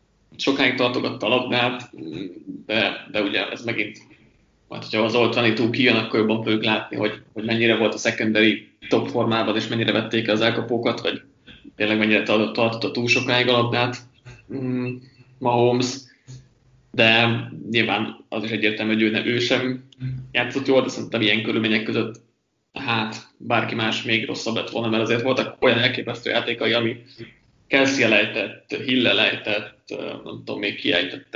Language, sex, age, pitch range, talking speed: Hungarian, male, 20-39, 110-125 Hz, 155 wpm